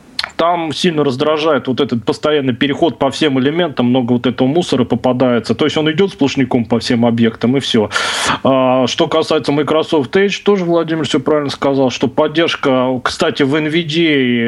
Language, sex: Russian, male